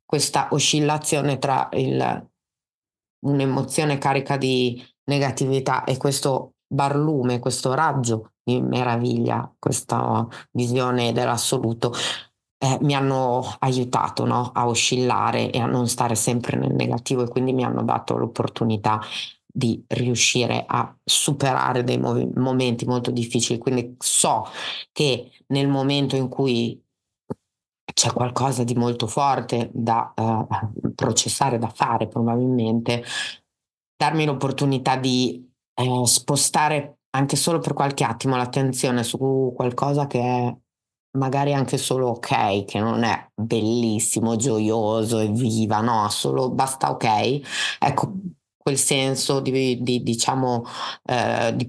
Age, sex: 30-49, female